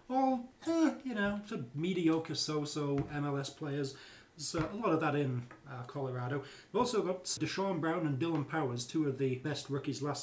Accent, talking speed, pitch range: British, 175 wpm, 135-165 Hz